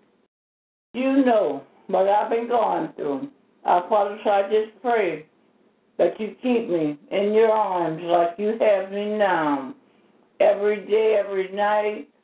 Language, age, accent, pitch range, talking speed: English, 60-79, American, 180-230 Hz, 140 wpm